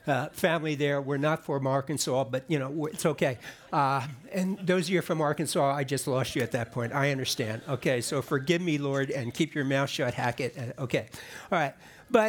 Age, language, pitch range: 60-79, English, 150-195 Hz